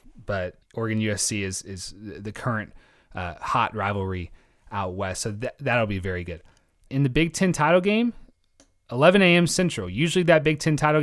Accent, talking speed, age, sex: American, 170 wpm, 30-49, male